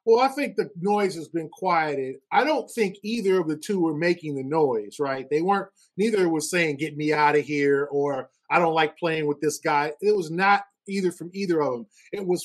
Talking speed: 230 wpm